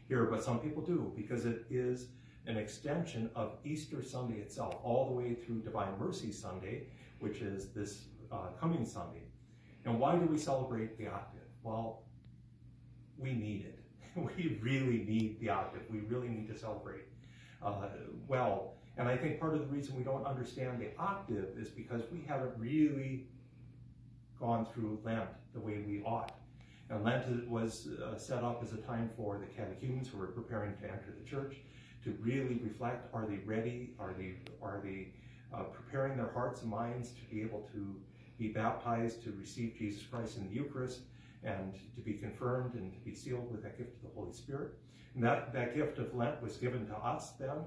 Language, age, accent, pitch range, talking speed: English, 40-59, American, 110-125 Hz, 185 wpm